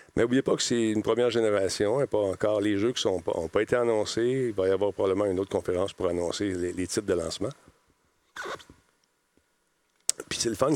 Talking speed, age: 200 wpm, 50-69